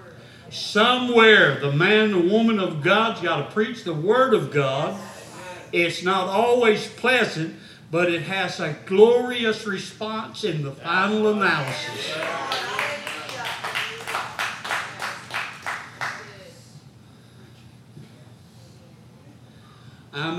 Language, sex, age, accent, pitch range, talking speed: English, male, 60-79, American, 125-190 Hz, 90 wpm